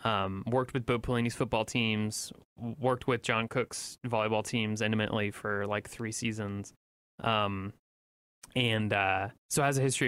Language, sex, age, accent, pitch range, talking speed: English, male, 20-39, American, 105-125 Hz, 150 wpm